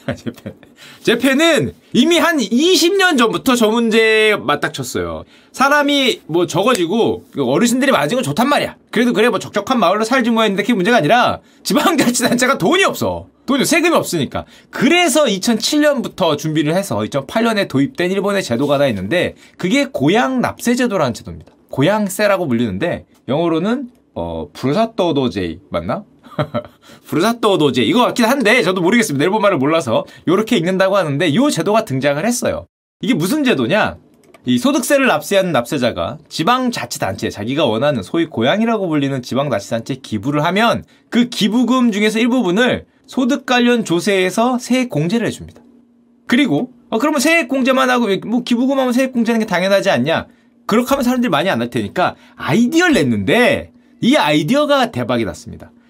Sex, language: male, Korean